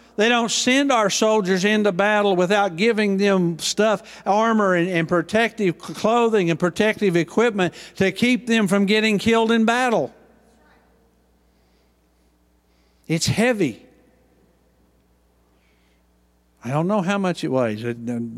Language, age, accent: English, 50-69, American